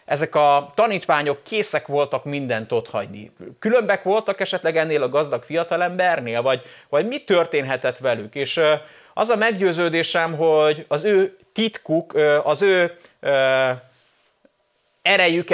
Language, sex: English, male